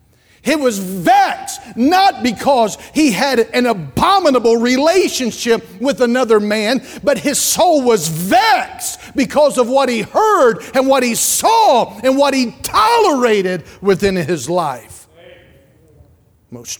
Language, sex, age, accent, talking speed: English, male, 40-59, American, 125 wpm